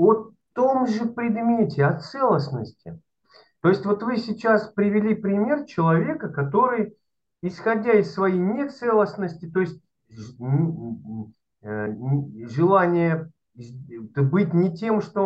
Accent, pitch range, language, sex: native, 140-195 Hz, Russian, male